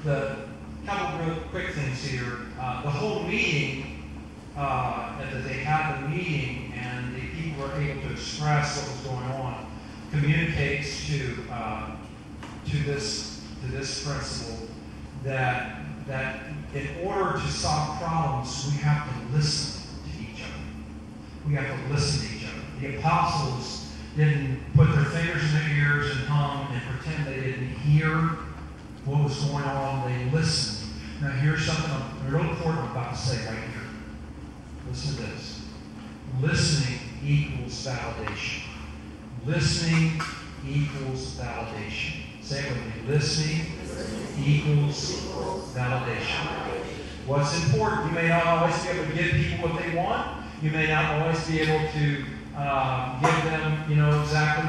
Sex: male